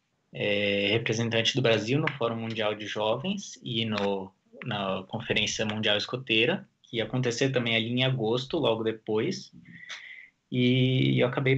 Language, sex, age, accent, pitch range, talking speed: Portuguese, male, 20-39, Brazilian, 110-145 Hz, 145 wpm